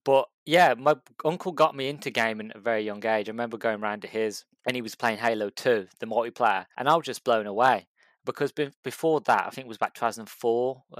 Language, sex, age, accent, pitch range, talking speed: English, male, 20-39, British, 110-140 Hz, 240 wpm